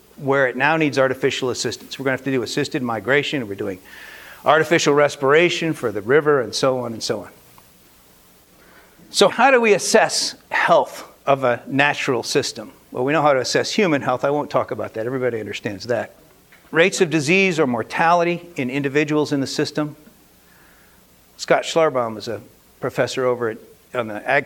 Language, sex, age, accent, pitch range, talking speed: English, male, 50-69, American, 125-160 Hz, 180 wpm